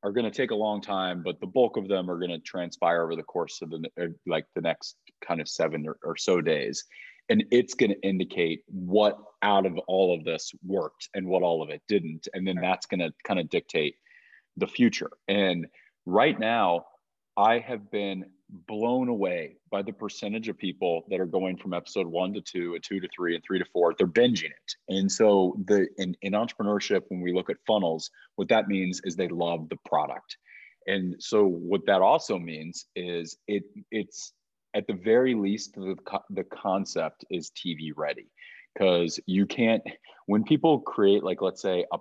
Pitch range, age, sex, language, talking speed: 90-105 Hz, 30-49, male, English, 200 wpm